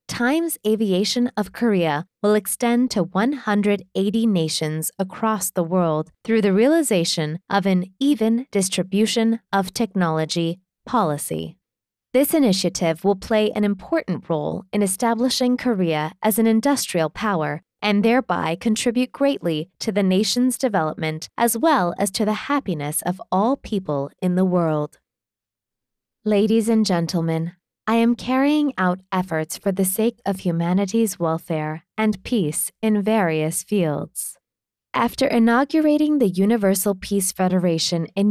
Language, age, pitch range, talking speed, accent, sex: English, 20-39, 170-230 Hz, 130 wpm, American, female